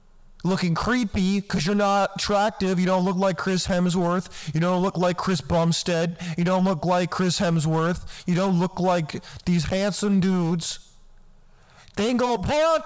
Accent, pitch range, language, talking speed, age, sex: American, 165-215 Hz, English, 170 wpm, 20-39, male